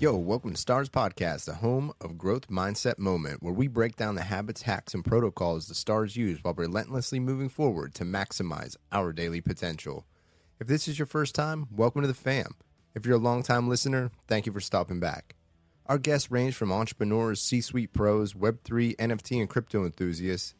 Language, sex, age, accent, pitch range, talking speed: English, male, 30-49, American, 85-120 Hz, 190 wpm